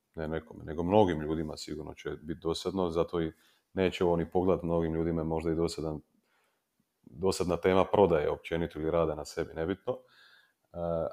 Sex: male